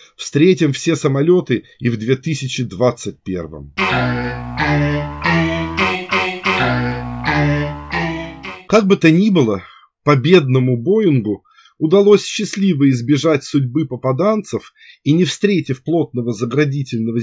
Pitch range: 125-165 Hz